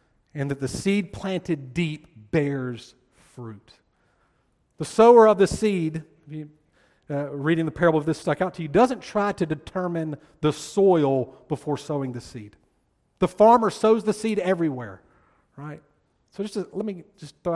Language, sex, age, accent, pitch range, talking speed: English, male, 40-59, American, 150-210 Hz, 160 wpm